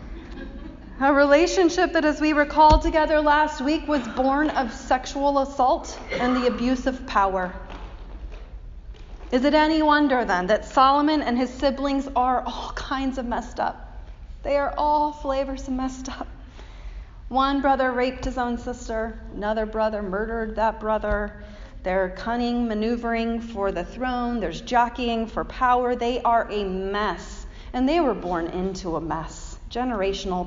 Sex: female